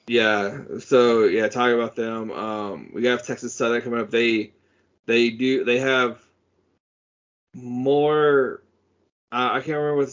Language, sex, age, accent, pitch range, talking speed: English, male, 20-39, American, 115-130 Hz, 140 wpm